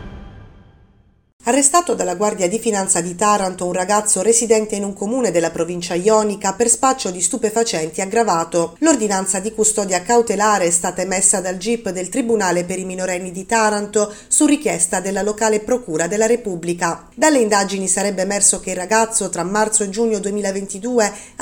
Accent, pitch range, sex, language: native, 185-235 Hz, female, Italian